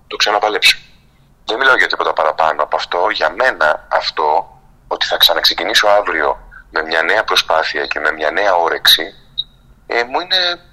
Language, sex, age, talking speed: Greek, male, 30-49, 155 wpm